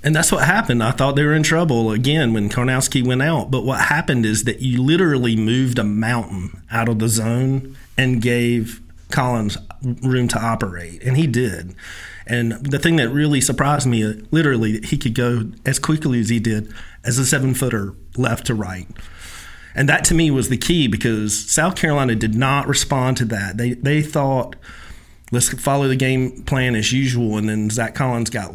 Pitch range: 115-140 Hz